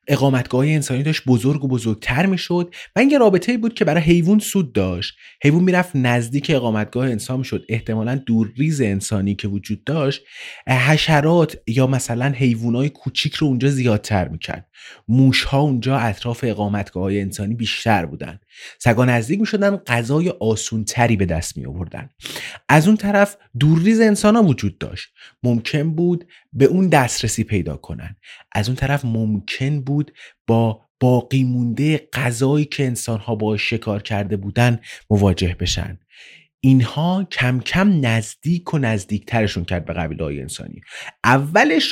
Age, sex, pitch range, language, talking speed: 30-49, male, 110-160 Hz, Persian, 145 wpm